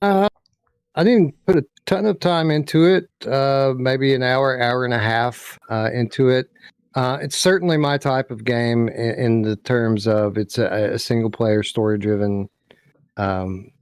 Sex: male